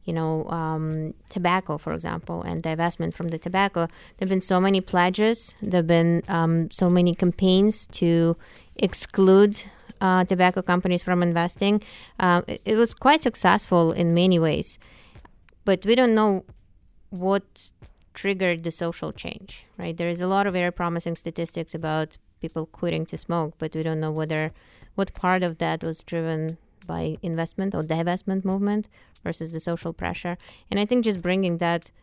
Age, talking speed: 20-39, 165 wpm